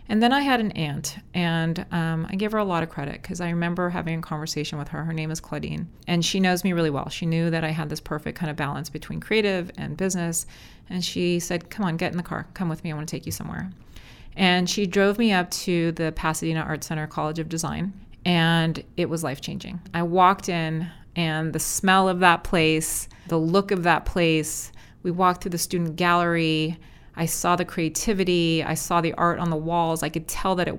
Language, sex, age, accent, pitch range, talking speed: English, female, 30-49, American, 160-185 Hz, 230 wpm